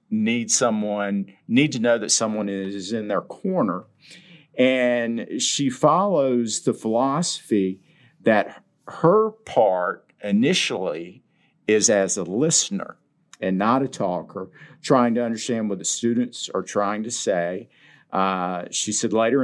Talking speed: 130 wpm